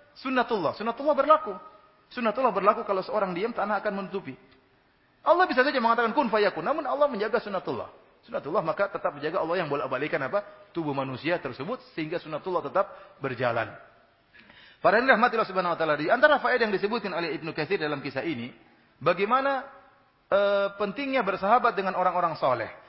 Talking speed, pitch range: 145 wpm, 160-235 Hz